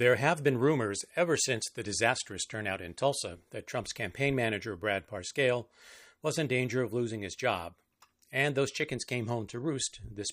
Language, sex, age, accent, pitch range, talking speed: English, male, 50-69, American, 100-135 Hz, 185 wpm